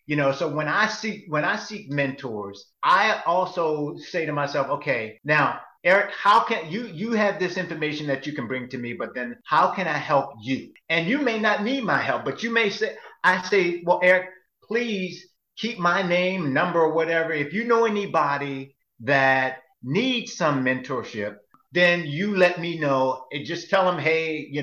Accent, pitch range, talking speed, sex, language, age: American, 130-185 Hz, 190 wpm, male, English, 50-69